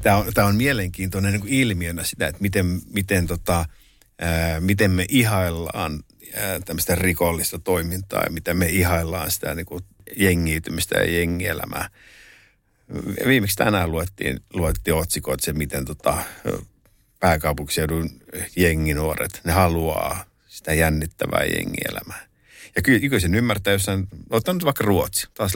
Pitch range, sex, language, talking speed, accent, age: 85-100 Hz, male, Finnish, 115 wpm, native, 50-69